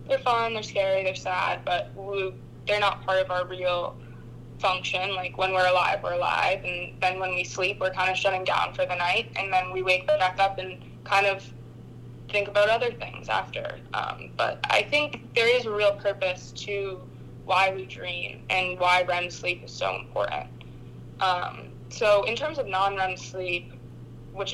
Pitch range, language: 180-200 Hz, English